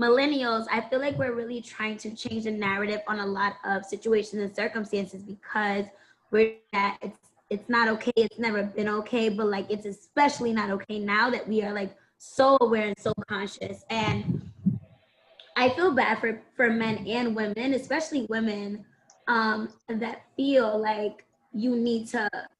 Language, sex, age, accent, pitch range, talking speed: English, female, 20-39, American, 210-240 Hz, 165 wpm